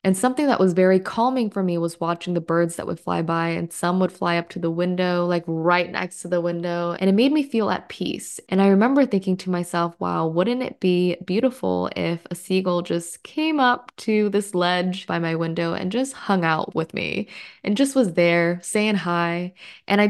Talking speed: 220 wpm